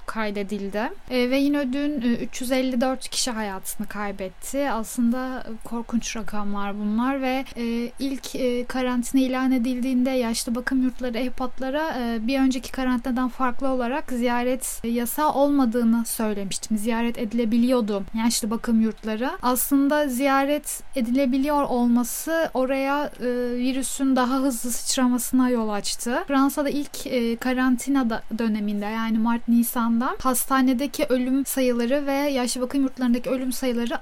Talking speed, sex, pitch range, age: 110 wpm, female, 230-270 Hz, 10-29